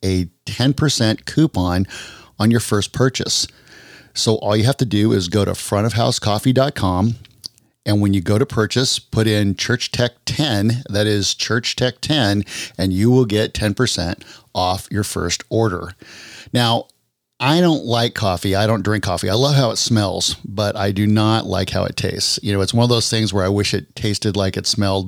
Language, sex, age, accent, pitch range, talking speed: English, male, 40-59, American, 100-115 Hz, 190 wpm